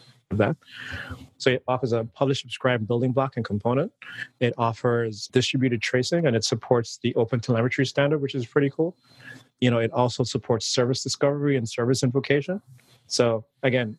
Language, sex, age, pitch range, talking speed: English, male, 30-49, 120-135 Hz, 165 wpm